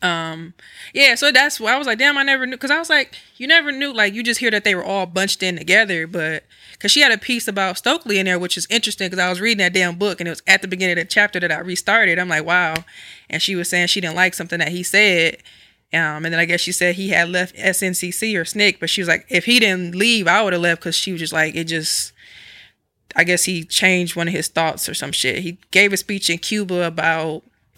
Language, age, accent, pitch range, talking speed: English, 20-39, American, 175-230 Hz, 270 wpm